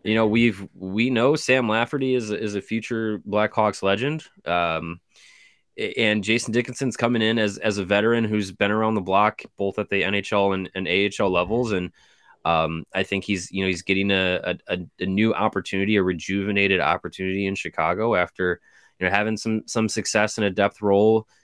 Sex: male